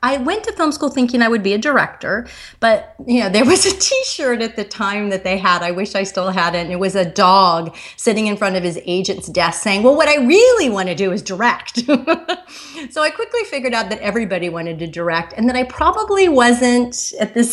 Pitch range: 175-240 Hz